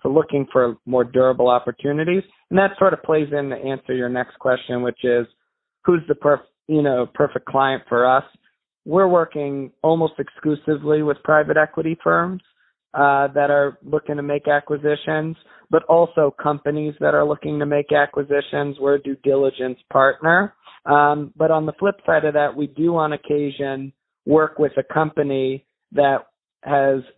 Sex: male